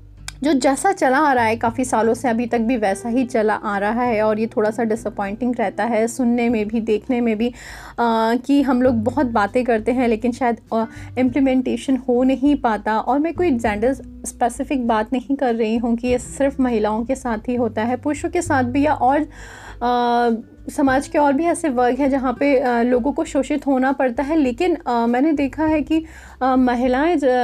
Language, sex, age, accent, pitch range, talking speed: Hindi, female, 30-49, native, 235-280 Hz, 205 wpm